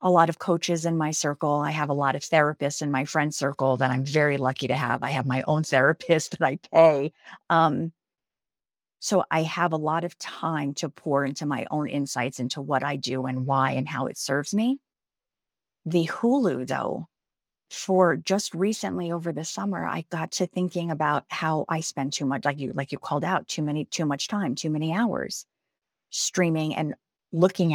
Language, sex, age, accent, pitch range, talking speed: English, female, 40-59, American, 145-180 Hz, 200 wpm